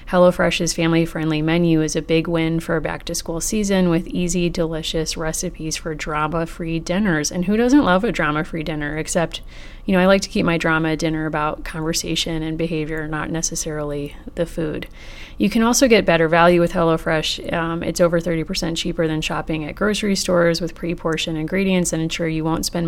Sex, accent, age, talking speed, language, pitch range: female, American, 30-49, 180 wpm, English, 160-180 Hz